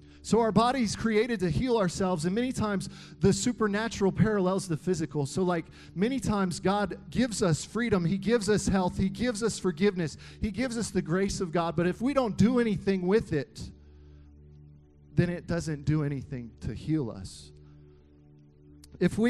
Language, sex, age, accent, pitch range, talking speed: English, male, 40-59, American, 150-210 Hz, 175 wpm